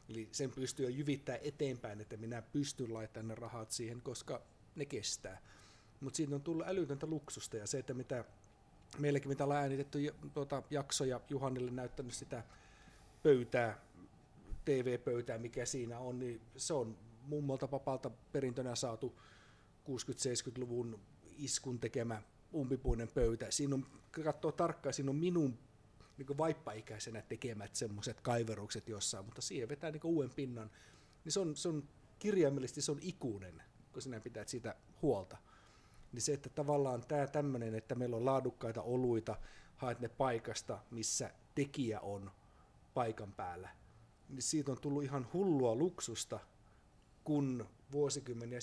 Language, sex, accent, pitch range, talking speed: Finnish, male, native, 110-140 Hz, 140 wpm